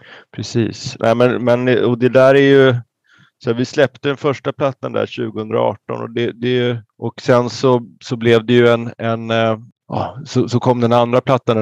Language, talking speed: Swedish, 140 wpm